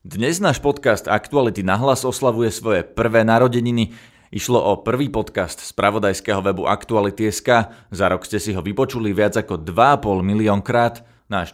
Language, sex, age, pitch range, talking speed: Slovak, male, 30-49, 95-120 Hz, 145 wpm